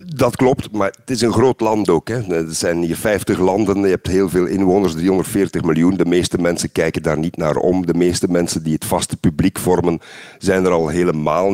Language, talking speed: Dutch, 215 wpm